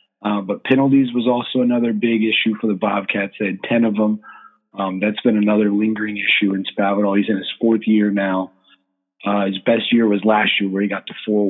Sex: male